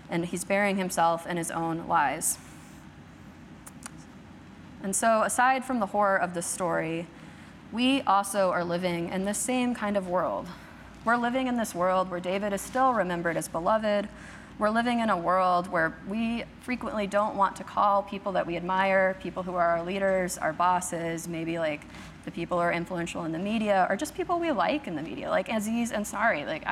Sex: female